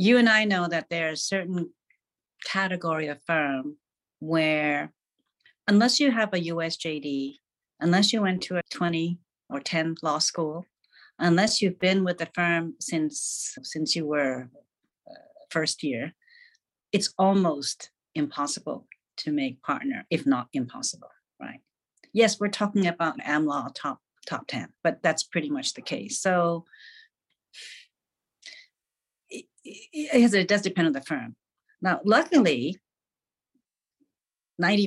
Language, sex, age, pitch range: Chinese, female, 50-69, 160-235 Hz